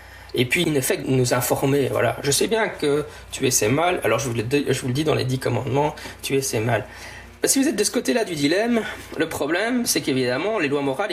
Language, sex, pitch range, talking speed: French, male, 120-145 Hz, 255 wpm